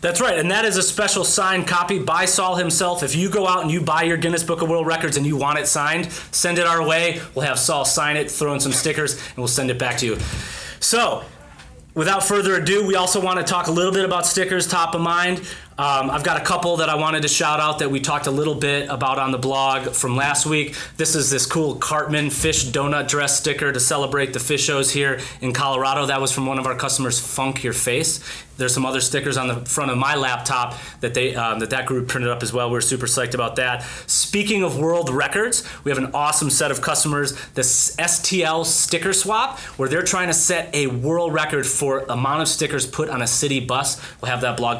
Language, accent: English, American